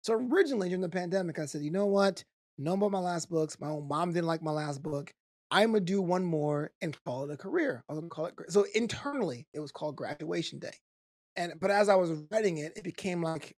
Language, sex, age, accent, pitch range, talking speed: English, male, 20-39, American, 155-190 Hz, 245 wpm